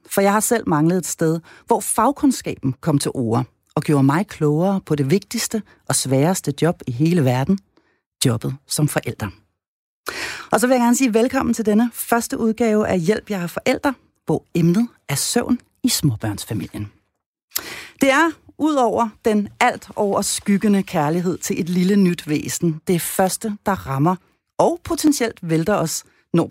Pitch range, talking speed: 145-235 Hz, 160 wpm